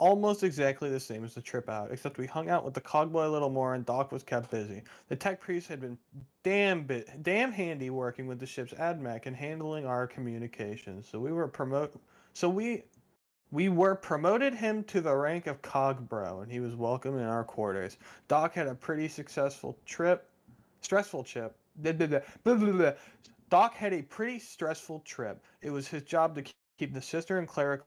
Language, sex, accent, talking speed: English, male, American, 190 wpm